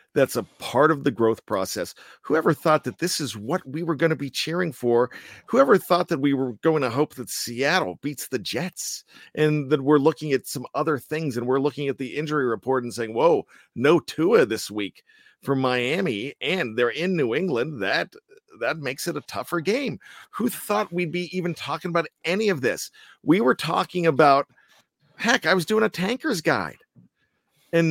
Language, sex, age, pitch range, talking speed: English, male, 50-69, 135-175 Hz, 195 wpm